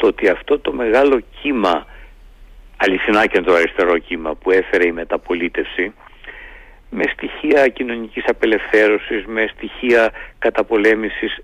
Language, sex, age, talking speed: Greek, male, 50-69, 110 wpm